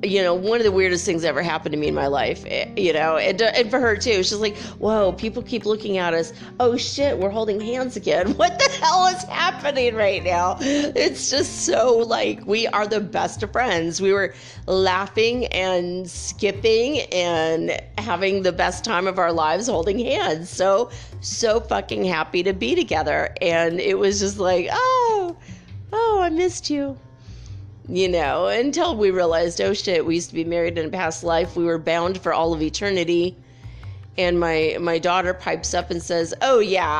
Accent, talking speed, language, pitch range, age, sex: American, 190 wpm, English, 160-210 Hz, 40-59, female